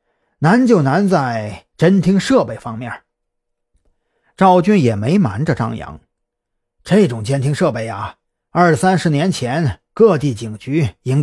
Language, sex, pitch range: Chinese, male, 115-170 Hz